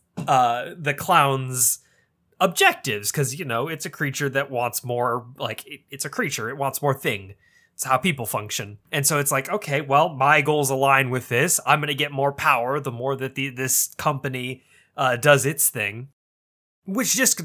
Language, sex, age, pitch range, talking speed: English, male, 20-39, 125-165 Hz, 185 wpm